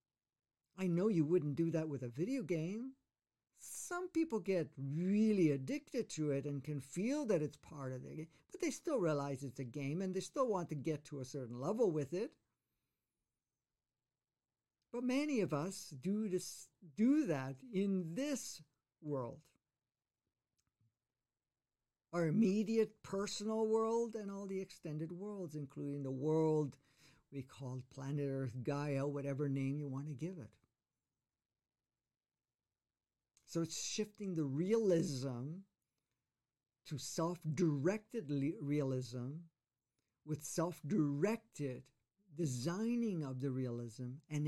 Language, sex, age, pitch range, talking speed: English, male, 50-69, 130-180 Hz, 125 wpm